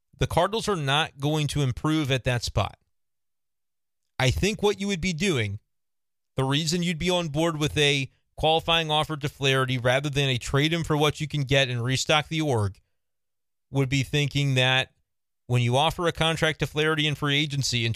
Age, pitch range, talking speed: 40-59, 125-155 Hz, 195 wpm